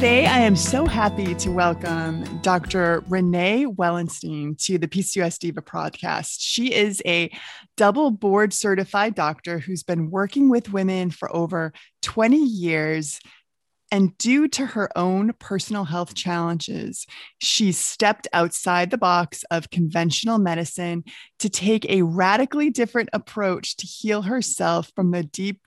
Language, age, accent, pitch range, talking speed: English, 20-39, American, 170-210 Hz, 140 wpm